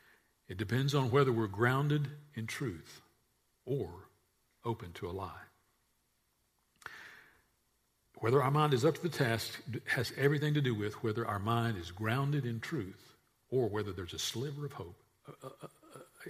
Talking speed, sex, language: 160 wpm, male, English